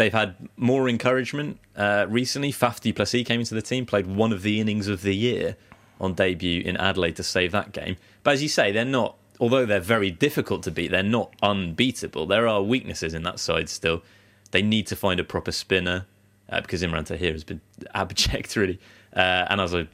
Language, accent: English, British